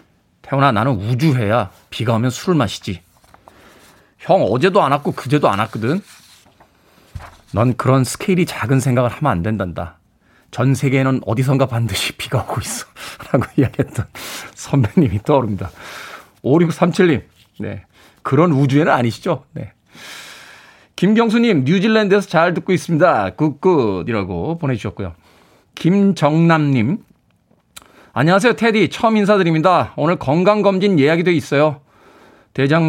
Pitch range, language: 120-180 Hz, Korean